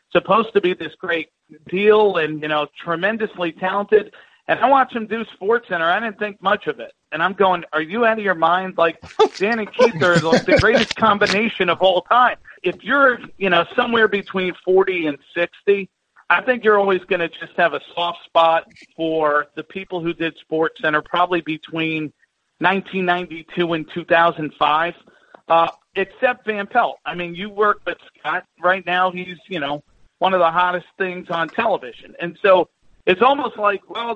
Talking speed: 185 wpm